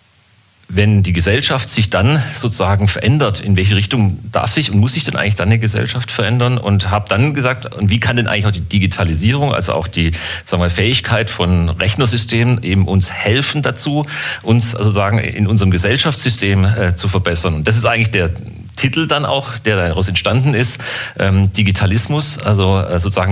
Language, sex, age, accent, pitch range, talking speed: German, male, 40-59, German, 95-120 Hz, 175 wpm